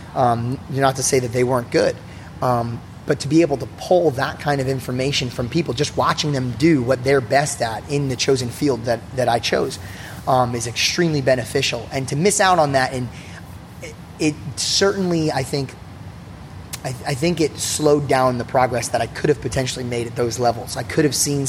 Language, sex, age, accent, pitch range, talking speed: English, male, 30-49, American, 120-135 Hz, 205 wpm